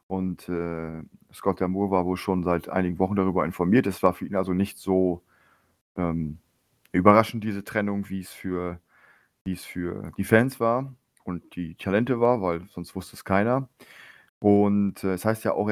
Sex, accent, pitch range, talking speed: male, German, 90-110 Hz, 170 wpm